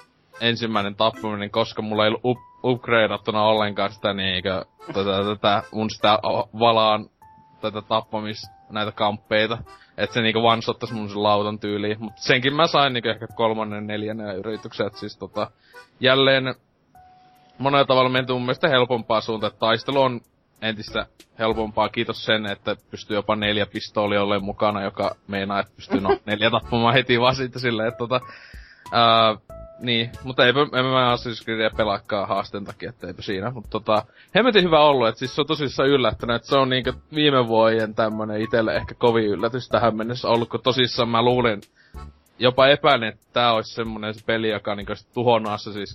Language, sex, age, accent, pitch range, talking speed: Finnish, male, 20-39, native, 105-125 Hz, 160 wpm